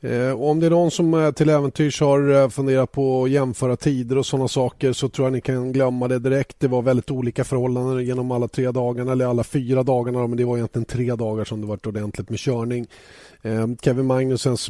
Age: 30-49